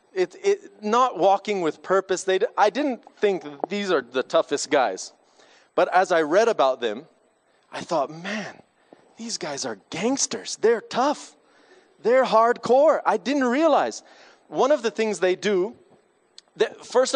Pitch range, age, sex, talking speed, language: 175-220 Hz, 30-49, male, 135 wpm, English